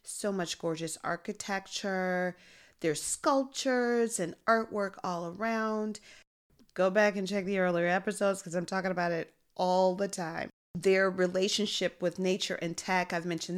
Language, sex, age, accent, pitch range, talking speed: English, female, 30-49, American, 170-220 Hz, 145 wpm